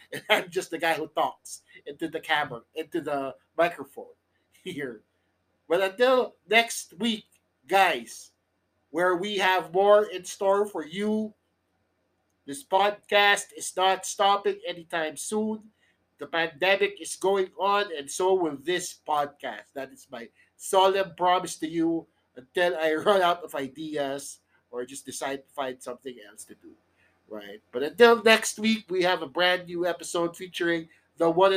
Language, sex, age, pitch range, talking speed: English, male, 50-69, 145-190 Hz, 150 wpm